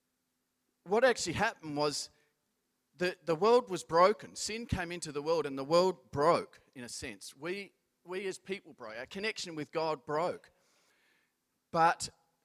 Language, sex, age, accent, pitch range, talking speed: English, male, 40-59, Australian, 135-190 Hz, 155 wpm